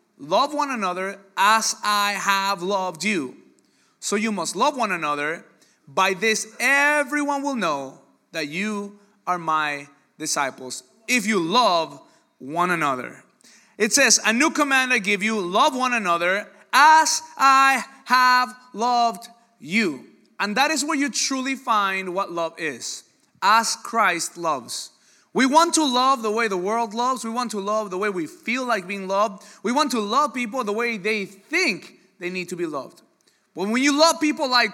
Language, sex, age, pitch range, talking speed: English, male, 30-49, 185-255 Hz, 170 wpm